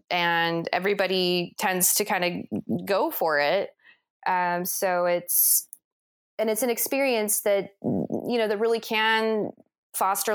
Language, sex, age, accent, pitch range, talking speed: English, female, 20-39, American, 180-230 Hz, 135 wpm